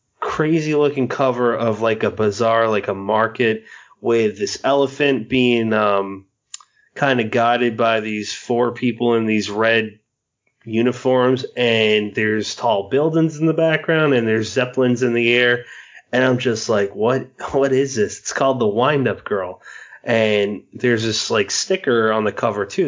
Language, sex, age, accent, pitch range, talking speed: English, male, 30-49, American, 110-135 Hz, 155 wpm